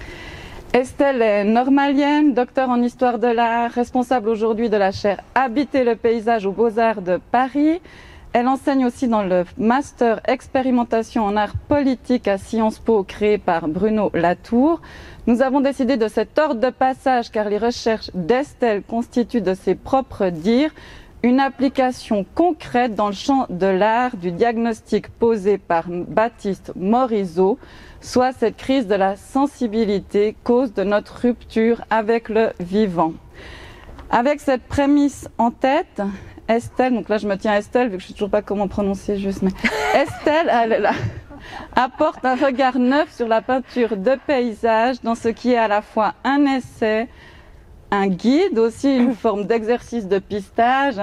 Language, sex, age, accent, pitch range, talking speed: French, female, 30-49, French, 210-255 Hz, 160 wpm